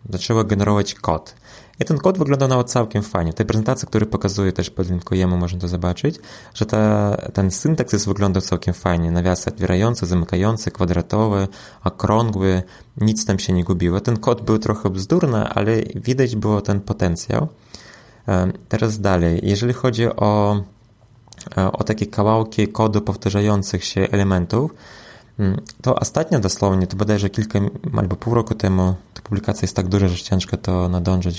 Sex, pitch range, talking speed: male, 95-115 Hz, 150 wpm